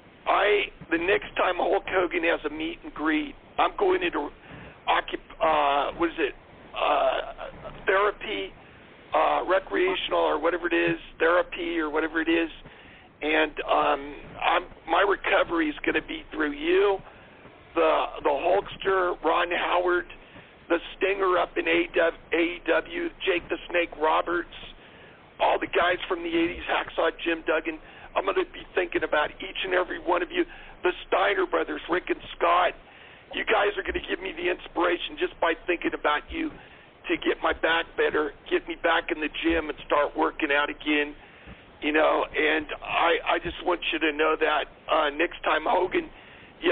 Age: 50-69